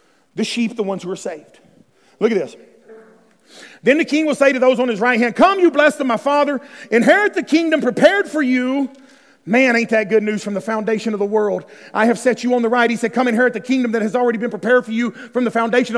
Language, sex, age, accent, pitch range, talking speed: English, male, 40-59, American, 225-310 Hz, 250 wpm